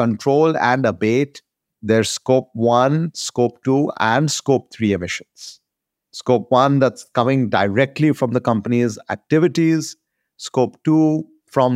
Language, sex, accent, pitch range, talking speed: English, male, Indian, 125-170 Hz, 120 wpm